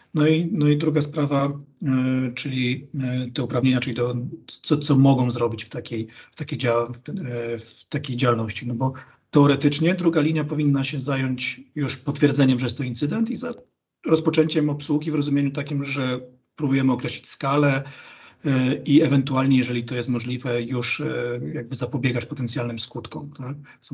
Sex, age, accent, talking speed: male, 40-59, native, 145 wpm